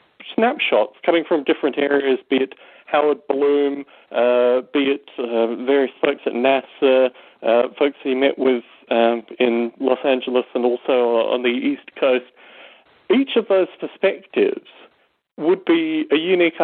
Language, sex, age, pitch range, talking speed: English, male, 40-59, 125-165 Hz, 145 wpm